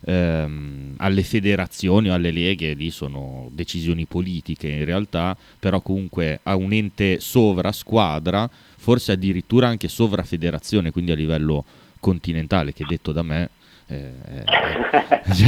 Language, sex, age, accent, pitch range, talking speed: Italian, male, 30-49, native, 85-110 Hz, 130 wpm